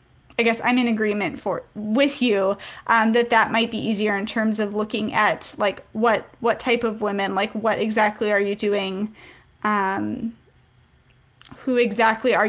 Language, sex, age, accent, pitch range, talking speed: English, female, 10-29, American, 215-245 Hz, 170 wpm